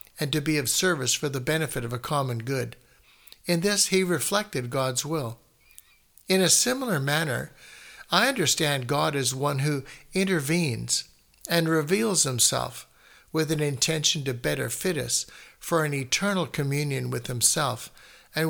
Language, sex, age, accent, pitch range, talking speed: English, male, 60-79, American, 130-165 Hz, 150 wpm